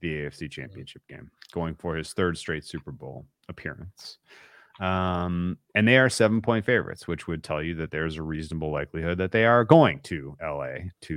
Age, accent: 30-49, American